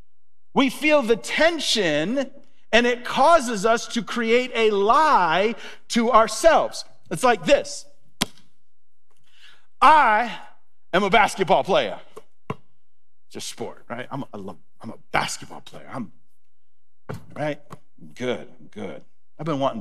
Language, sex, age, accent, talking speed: English, male, 40-59, American, 115 wpm